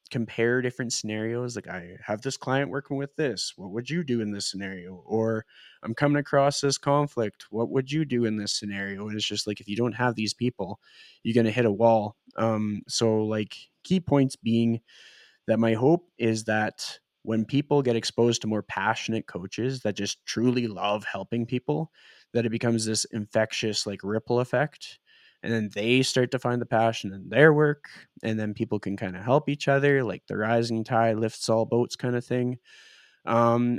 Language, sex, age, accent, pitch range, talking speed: English, male, 20-39, American, 110-135 Hz, 195 wpm